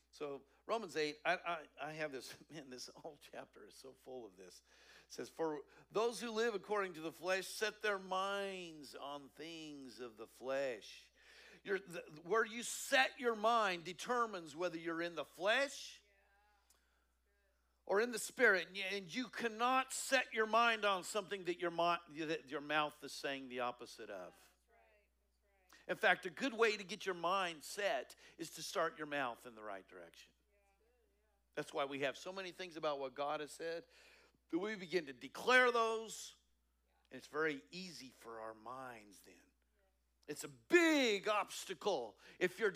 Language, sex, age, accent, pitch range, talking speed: English, male, 50-69, American, 135-205 Hz, 170 wpm